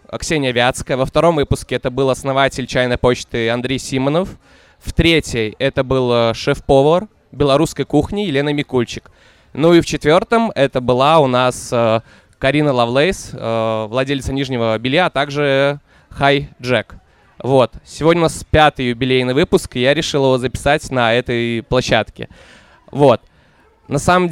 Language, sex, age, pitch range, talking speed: Russian, male, 20-39, 120-145 Hz, 140 wpm